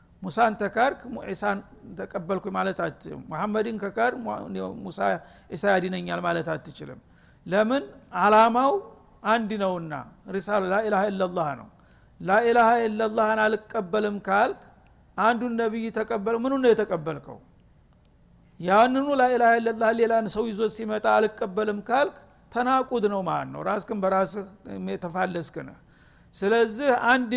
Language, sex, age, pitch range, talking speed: Amharic, male, 50-69, 195-235 Hz, 90 wpm